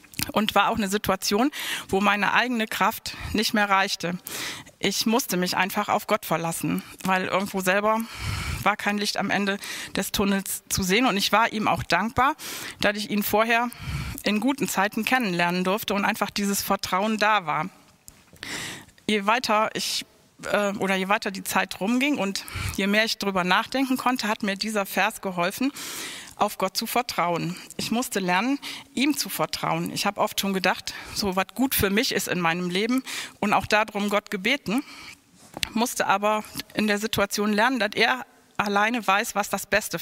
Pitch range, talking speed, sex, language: 195-225 Hz, 175 wpm, female, German